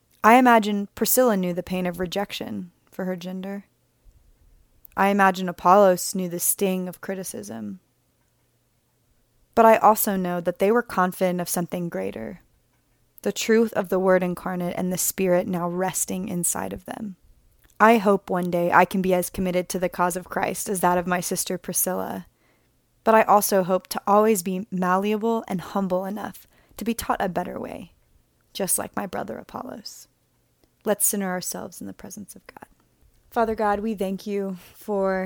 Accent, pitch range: American, 185-205 Hz